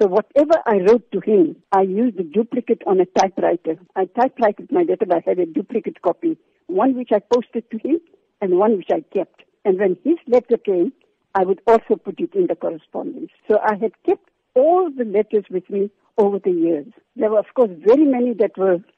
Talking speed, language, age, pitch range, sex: 215 wpm, English, 60-79, 195-310 Hz, female